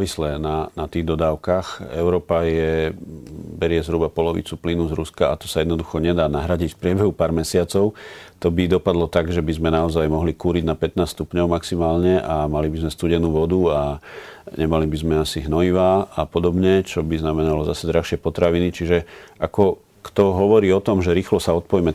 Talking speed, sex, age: 180 wpm, male, 40-59